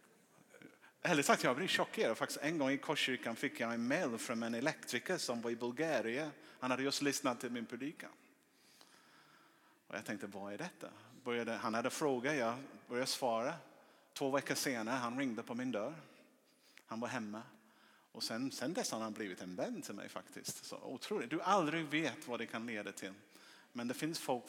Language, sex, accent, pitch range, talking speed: Swedish, male, Norwegian, 115-140 Hz, 190 wpm